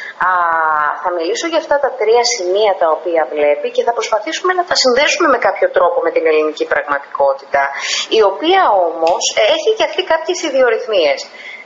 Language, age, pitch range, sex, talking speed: Greek, 20-39, 185-285 Hz, female, 160 wpm